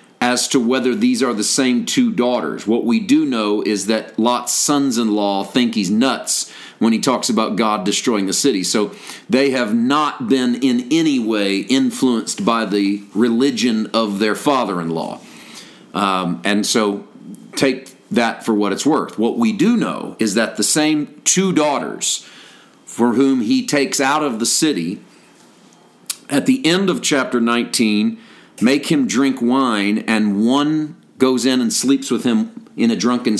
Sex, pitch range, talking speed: male, 105-155 Hz, 160 wpm